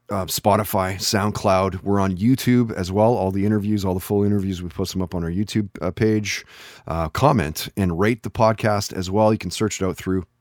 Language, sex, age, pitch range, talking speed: English, male, 30-49, 100-125 Hz, 220 wpm